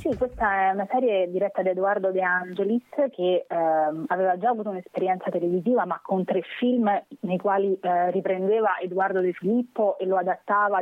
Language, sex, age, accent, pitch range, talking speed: Italian, female, 20-39, native, 180-230 Hz, 175 wpm